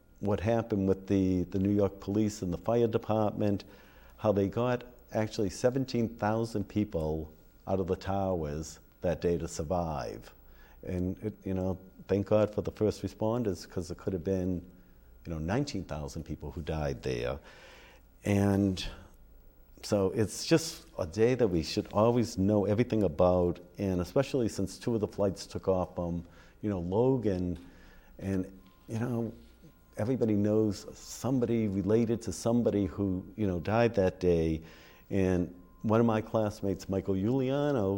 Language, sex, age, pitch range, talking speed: English, male, 50-69, 90-110 Hz, 155 wpm